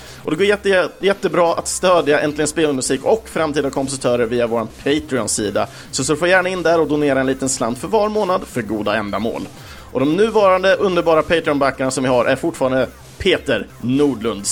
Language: Swedish